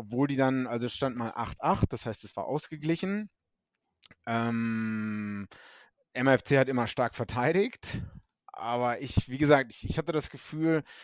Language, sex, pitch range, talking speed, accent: German, male, 110-135 Hz, 150 wpm, German